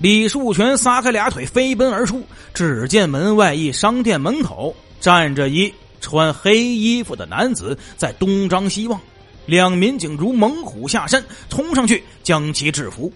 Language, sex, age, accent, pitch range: Chinese, male, 30-49, native, 170-235 Hz